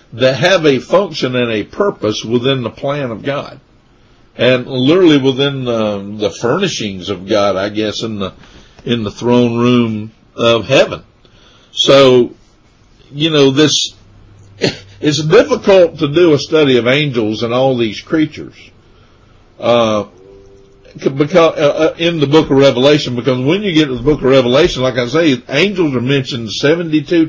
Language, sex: English, male